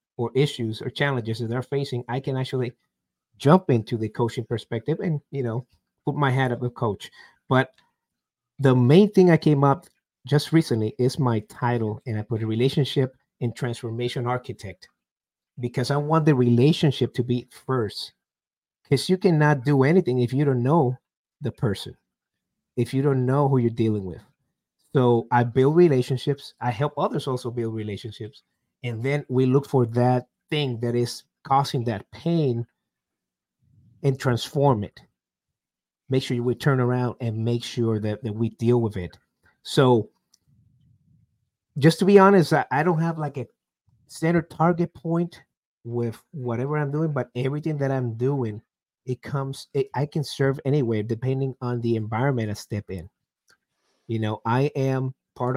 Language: English